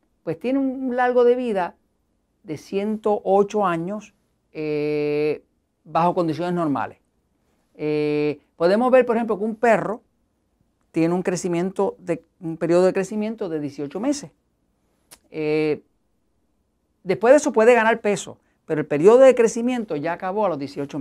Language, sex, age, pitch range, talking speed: Spanish, male, 40-59, 155-230 Hz, 135 wpm